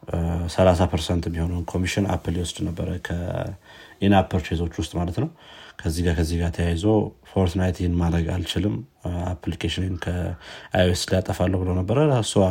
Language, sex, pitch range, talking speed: Amharic, male, 85-100 Hz, 125 wpm